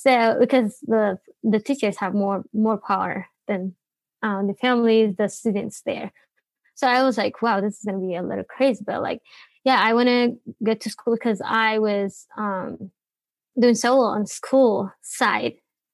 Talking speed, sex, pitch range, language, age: 180 wpm, female, 210-245 Hz, English, 20-39